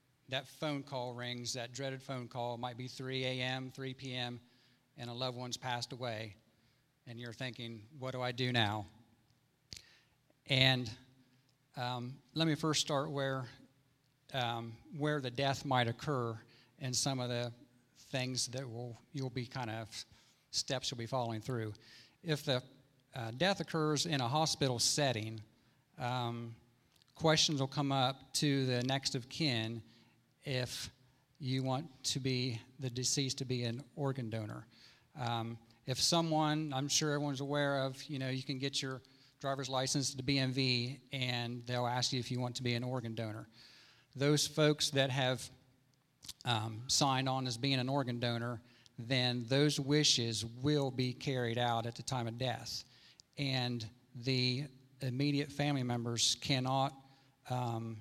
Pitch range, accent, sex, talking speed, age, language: 120-135 Hz, American, male, 155 wpm, 50-69, English